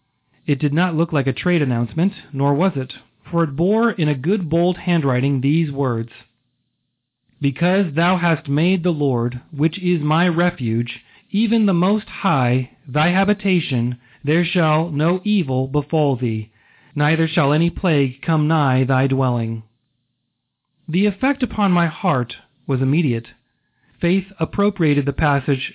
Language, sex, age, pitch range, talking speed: English, male, 40-59, 130-180 Hz, 145 wpm